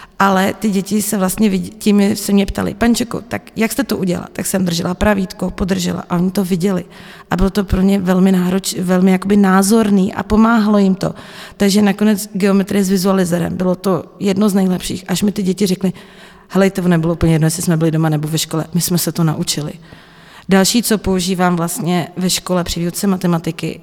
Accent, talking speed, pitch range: native, 200 wpm, 180-200 Hz